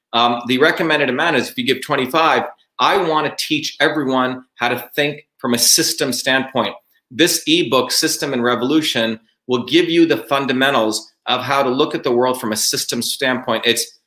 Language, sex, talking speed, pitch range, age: English, male, 185 wpm, 125-155 Hz, 40-59